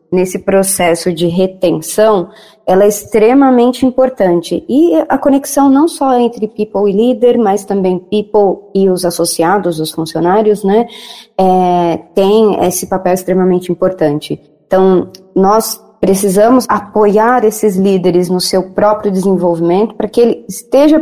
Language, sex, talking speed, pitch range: Portuguese, female, 130 wpm, 185-215 Hz